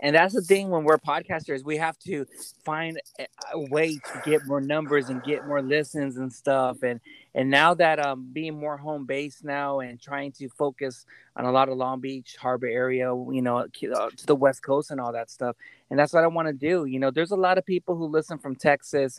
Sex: male